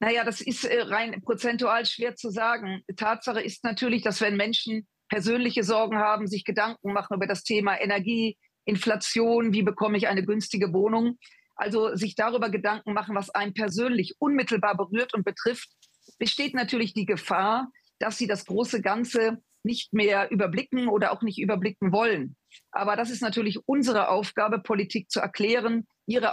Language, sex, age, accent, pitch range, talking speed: German, female, 40-59, German, 200-230 Hz, 160 wpm